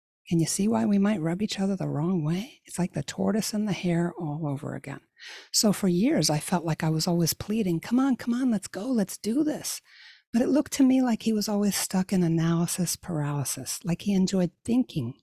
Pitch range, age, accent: 160-225 Hz, 60-79, American